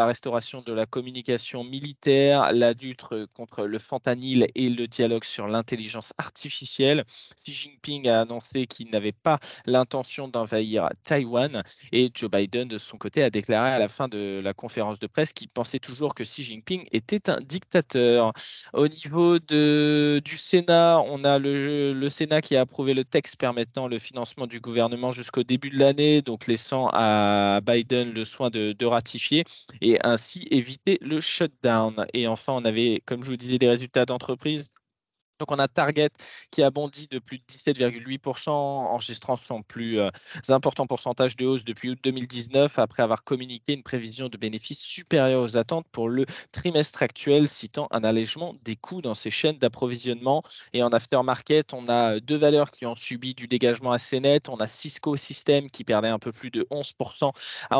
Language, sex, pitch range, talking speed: French, male, 120-145 Hz, 180 wpm